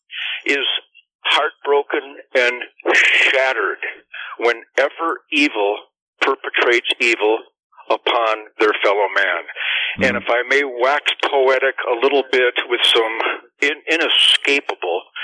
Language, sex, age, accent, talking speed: English, male, 50-69, American, 95 wpm